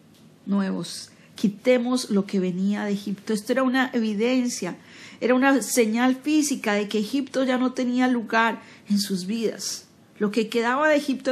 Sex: female